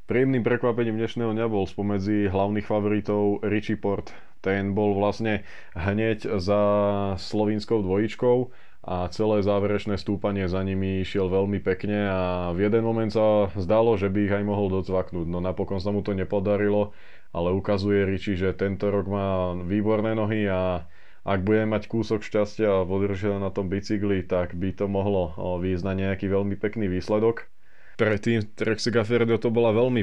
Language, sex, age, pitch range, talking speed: Slovak, male, 20-39, 95-105 Hz, 160 wpm